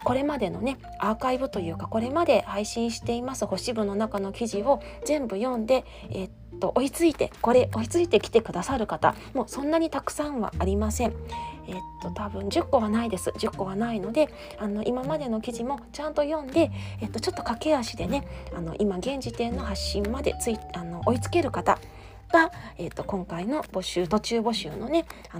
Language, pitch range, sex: Japanese, 195-260 Hz, female